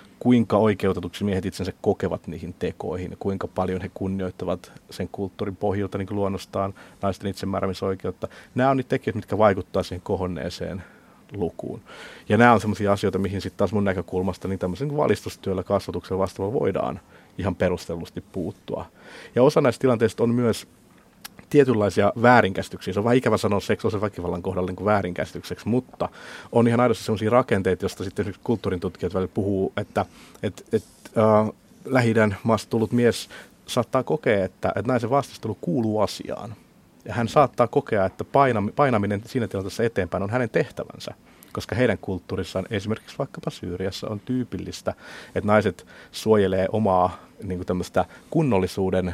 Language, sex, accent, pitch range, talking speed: Finnish, male, native, 95-115 Hz, 145 wpm